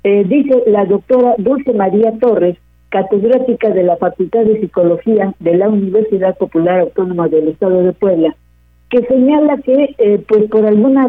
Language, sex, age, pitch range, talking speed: Spanish, female, 50-69, 185-230 Hz, 155 wpm